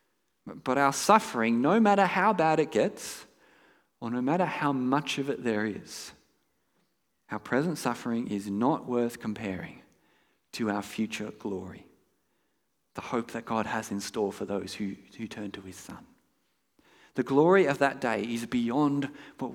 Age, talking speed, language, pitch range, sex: 40-59, 160 wpm, English, 110-150 Hz, male